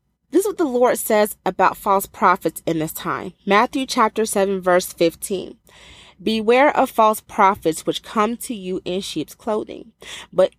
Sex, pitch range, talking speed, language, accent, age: female, 180-260 Hz, 165 wpm, English, American, 30-49